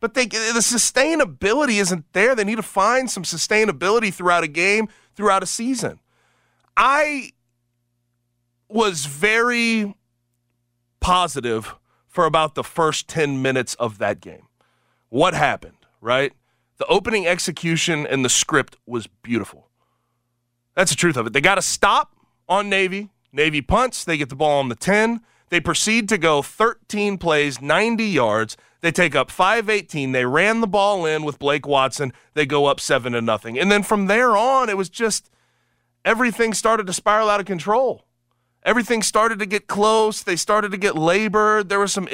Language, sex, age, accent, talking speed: English, male, 30-49, American, 160 wpm